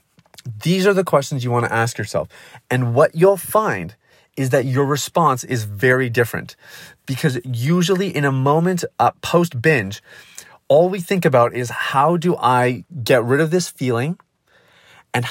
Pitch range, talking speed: 120-155 Hz, 165 wpm